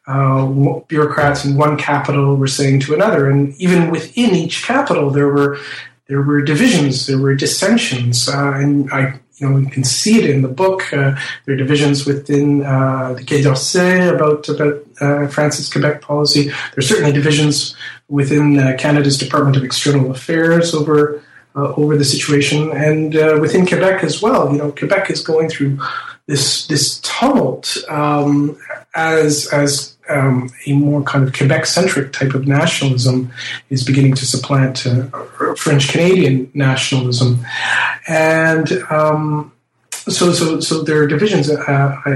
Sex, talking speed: male, 155 wpm